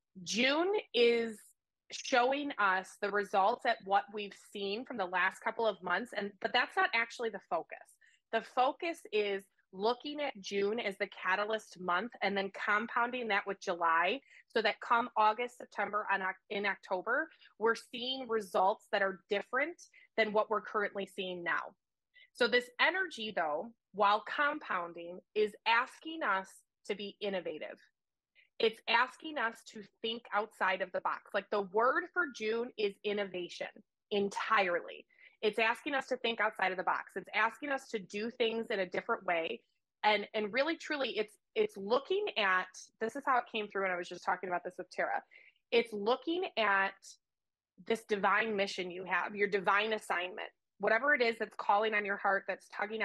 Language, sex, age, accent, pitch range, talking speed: English, female, 20-39, American, 195-245 Hz, 170 wpm